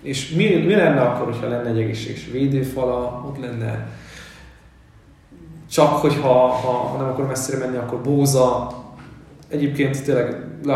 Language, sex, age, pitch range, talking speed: Hungarian, male, 20-39, 125-140 Hz, 140 wpm